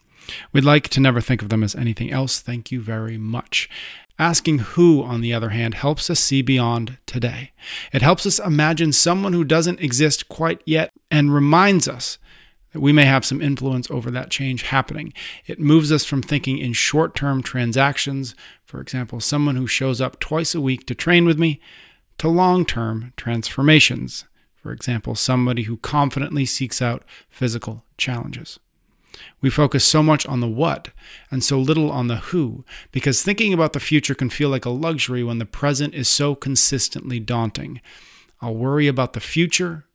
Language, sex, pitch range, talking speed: English, male, 120-155 Hz, 175 wpm